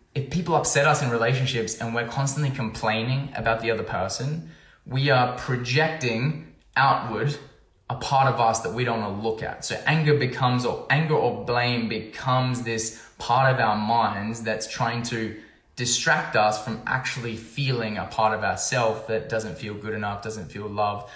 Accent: Australian